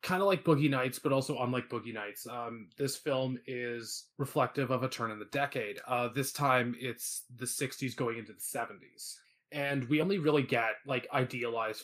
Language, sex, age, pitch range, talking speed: English, male, 20-39, 120-140 Hz, 195 wpm